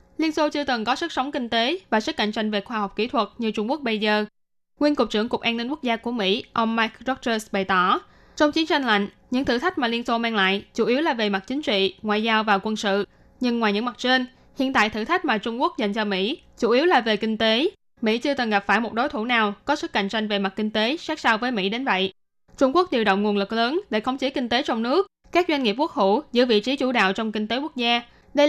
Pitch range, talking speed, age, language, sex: 215-270 Hz, 285 wpm, 10-29, Vietnamese, female